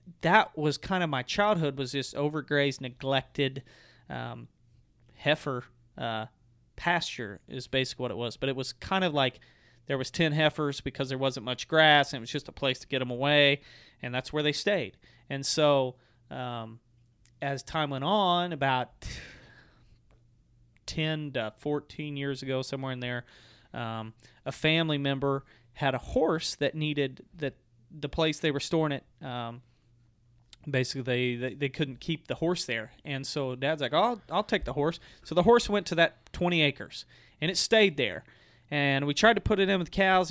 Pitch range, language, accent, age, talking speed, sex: 125-155 Hz, English, American, 30-49, 180 wpm, male